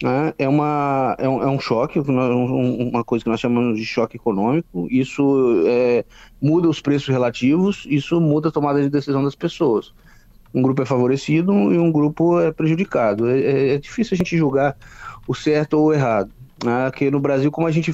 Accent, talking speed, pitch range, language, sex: Brazilian, 180 wpm, 125-155 Hz, Portuguese, male